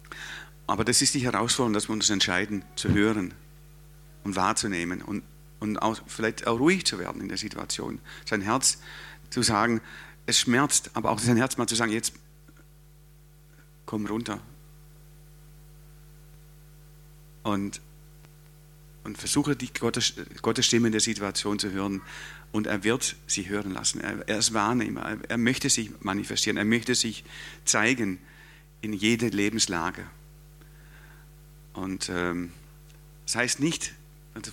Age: 50-69